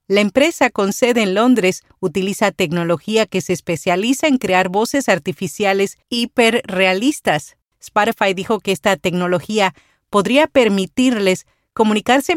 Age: 40-59